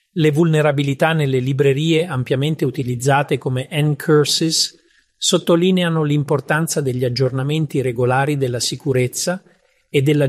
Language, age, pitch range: Italian, 40-59, 130-155 Hz